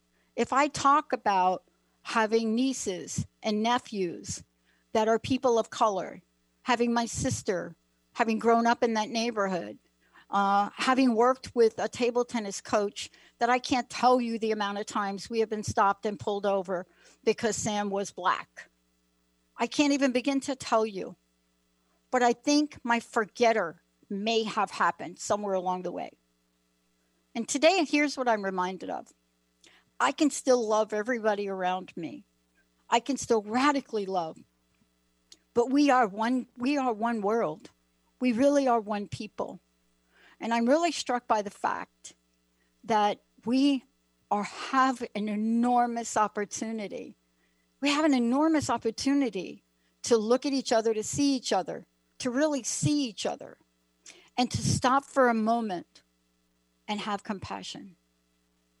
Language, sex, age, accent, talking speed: English, female, 60-79, American, 145 wpm